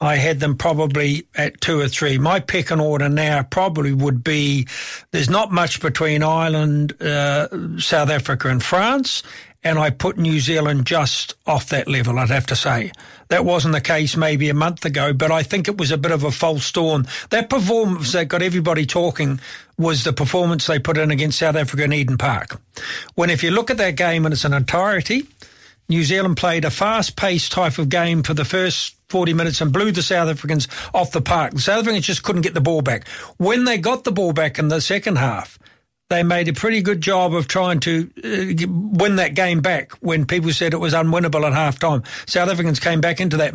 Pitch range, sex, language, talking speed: 150-180 Hz, male, English, 215 wpm